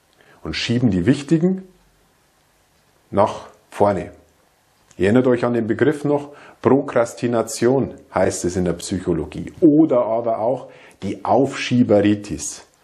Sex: male